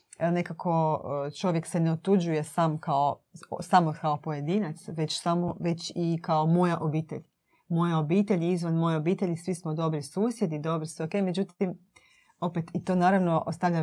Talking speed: 155 wpm